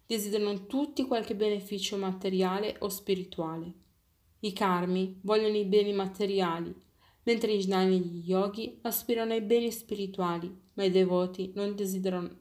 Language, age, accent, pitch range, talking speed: Italian, 30-49, native, 185-225 Hz, 135 wpm